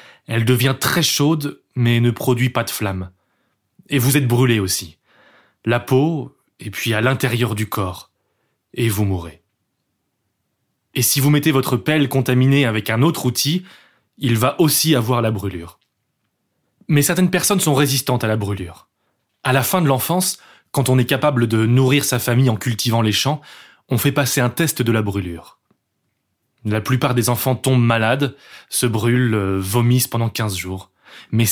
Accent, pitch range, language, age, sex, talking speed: French, 110-140 Hz, French, 20-39, male, 170 wpm